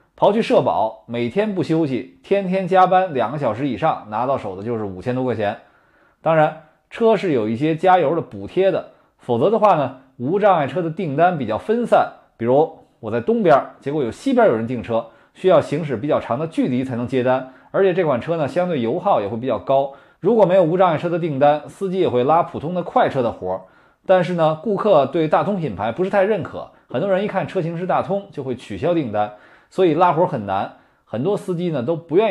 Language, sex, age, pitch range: Chinese, male, 20-39, 125-190 Hz